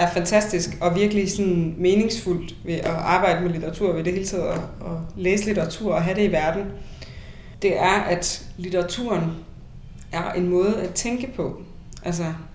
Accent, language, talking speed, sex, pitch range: native, Danish, 165 wpm, female, 170-200 Hz